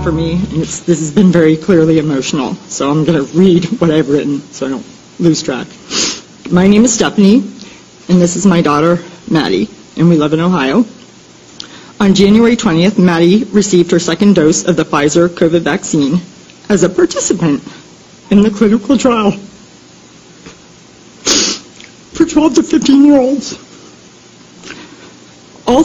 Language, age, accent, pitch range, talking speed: Italian, 40-59, American, 175-240 Hz, 145 wpm